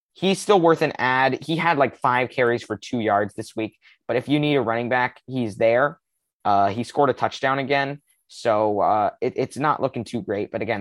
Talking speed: 215 wpm